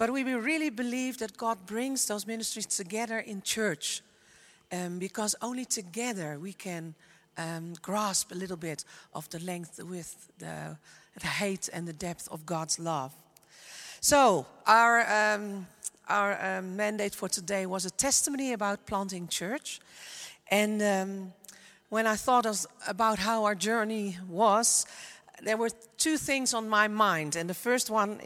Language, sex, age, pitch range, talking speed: English, female, 40-59, 190-240 Hz, 150 wpm